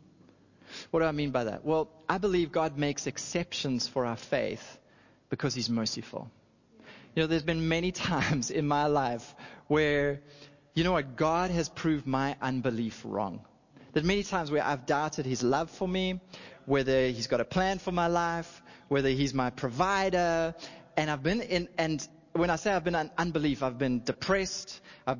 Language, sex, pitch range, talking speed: English, male, 140-175 Hz, 200 wpm